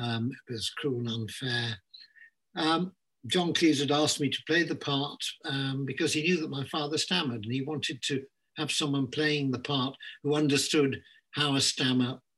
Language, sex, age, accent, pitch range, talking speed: English, male, 60-79, British, 125-165 Hz, 185 wpm